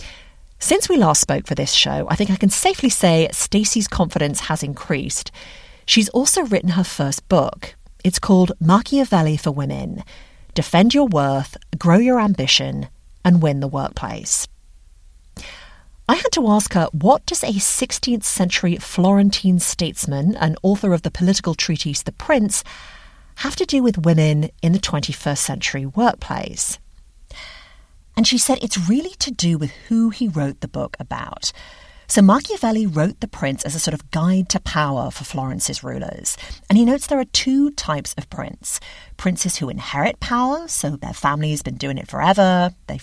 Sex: female